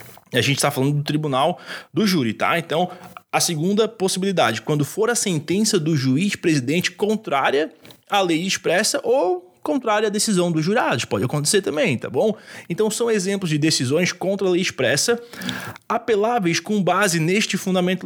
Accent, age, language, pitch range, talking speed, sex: Brazilian, 20-39, Portuguese, 150-205 Hz, 165 wpm, male